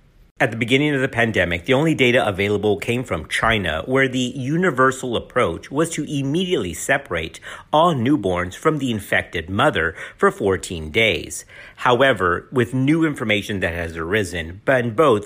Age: 50-69